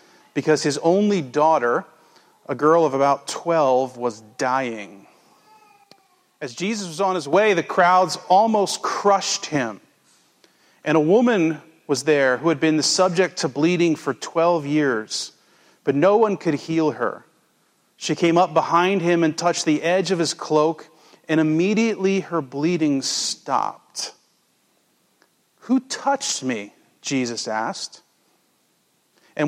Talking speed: 135 wpm